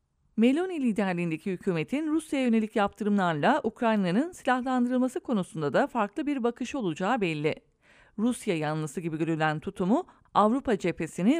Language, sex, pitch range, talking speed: English, female, 185-255 Hz, 115 wpm